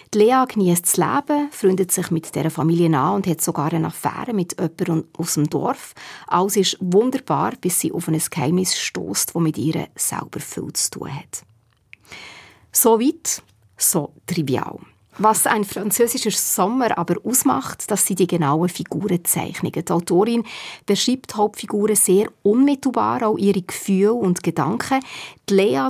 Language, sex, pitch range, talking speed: German, female, 170-210 Hz, 155 wpm